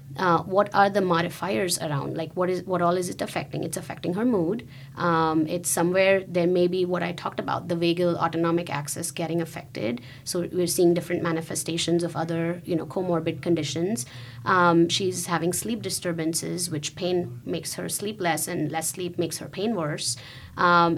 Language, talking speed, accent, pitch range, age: English, 185 wpm, Indian, 165-185 Hz, 20-39